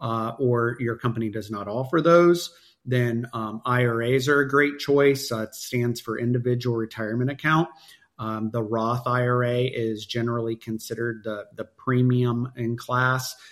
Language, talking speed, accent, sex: English, 145 wpm, American, male